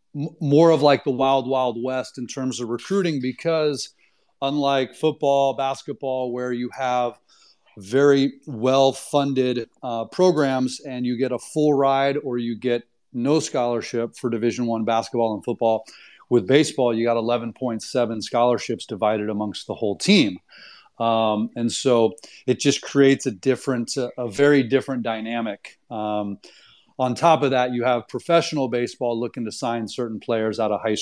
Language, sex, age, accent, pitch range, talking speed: English, male, 30-49, American, 120-140 Hz, 155 wpm